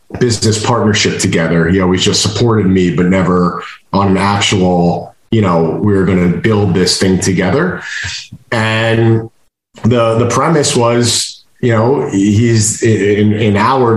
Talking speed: 145 wpm